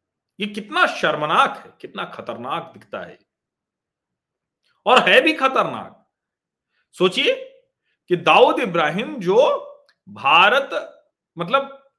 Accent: native